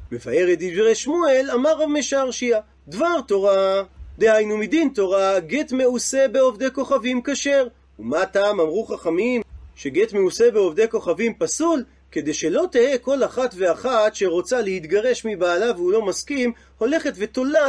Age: 30-49